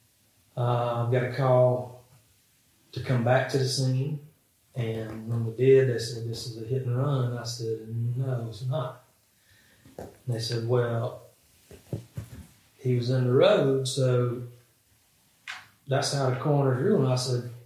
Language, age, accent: English, 30-49, American